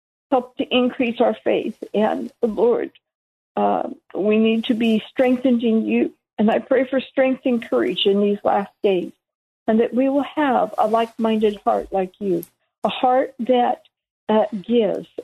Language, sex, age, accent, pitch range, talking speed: English, female, 60-79, American, 200-250 Hz, 165 wpm